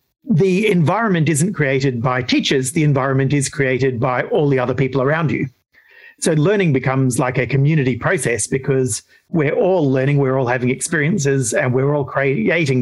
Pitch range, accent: 130-170 Hz, Australian